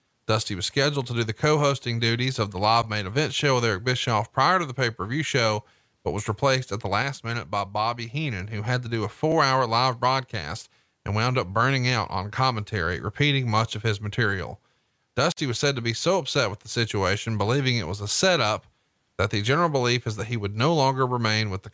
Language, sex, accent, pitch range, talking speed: English, male, American, 110-135 Hz, 225 wpm